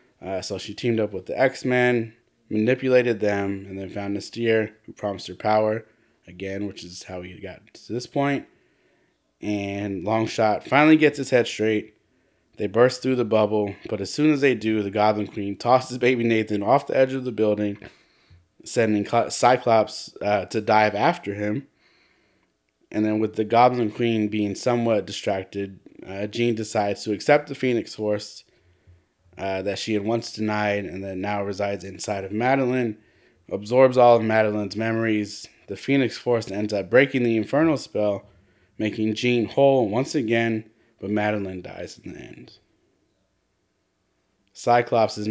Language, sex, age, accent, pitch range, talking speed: English, male, 20-39, American, 100-120 Hz, 160 wpm